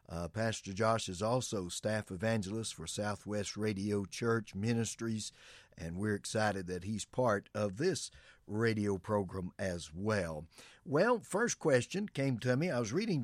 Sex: male